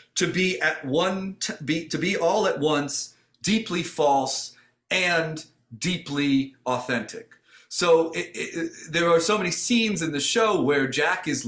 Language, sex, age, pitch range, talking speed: English, male, 40-59, 125-165 Hz, 160 wpm